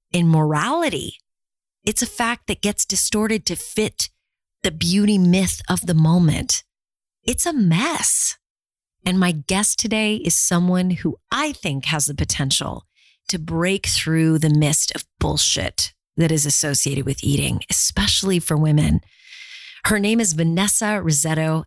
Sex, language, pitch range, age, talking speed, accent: female, English, 155-205 Hz, 30-49, 140 wpm, American